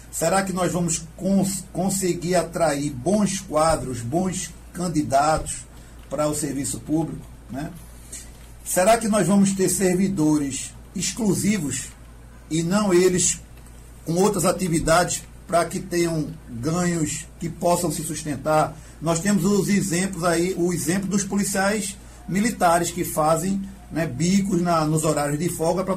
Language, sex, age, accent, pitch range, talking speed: Portuguese, male, 50-69, Brazilian, 155-195 Hz, 125 wpm